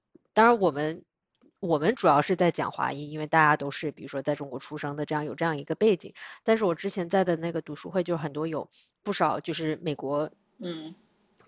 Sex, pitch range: female, 155-190 Hz